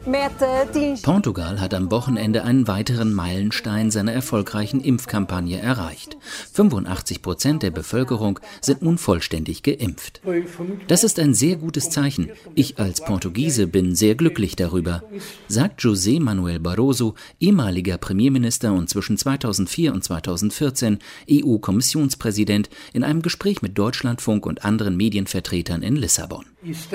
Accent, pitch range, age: German, 100-145 Hz, 40-59